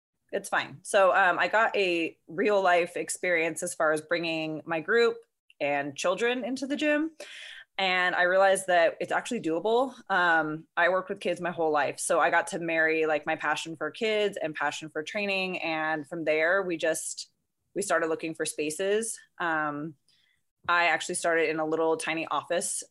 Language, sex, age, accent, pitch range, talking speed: English, female, 20-39, American, 160-205 Hz, 180 wpm